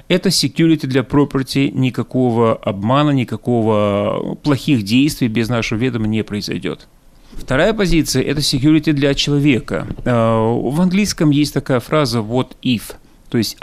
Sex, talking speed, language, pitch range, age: male, 130 wpm, Russian, 110-145 Hz, 30-49